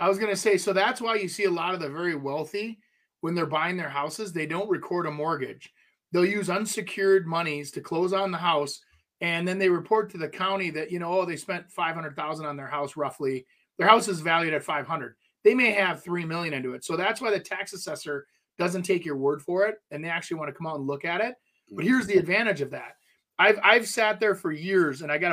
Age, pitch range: 30-49, 155-210 Hz